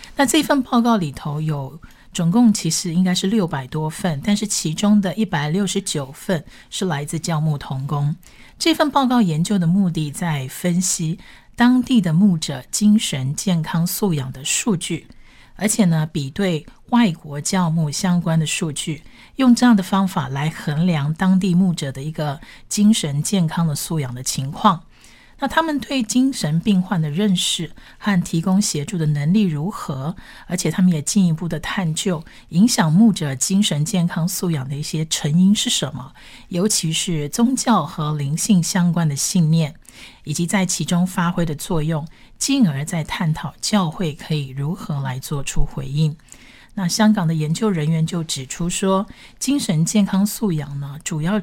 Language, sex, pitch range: Chinese, female, 150-195 Hz